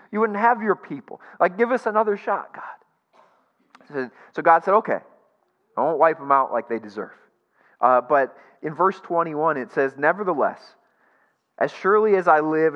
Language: English